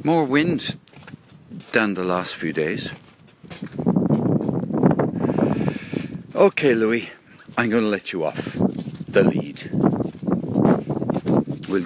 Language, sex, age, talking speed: English, male, 60-79, 85 wpm